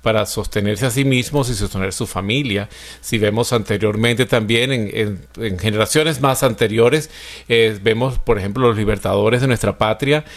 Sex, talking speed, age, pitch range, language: male, 155 wpm, 40-59, 105-130 Hz, Spanish